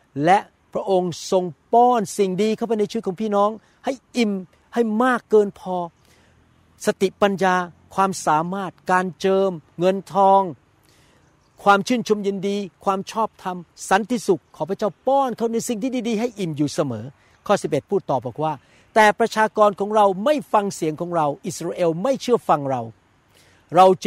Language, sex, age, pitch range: Thai, male, 60-79, 150-205 Hz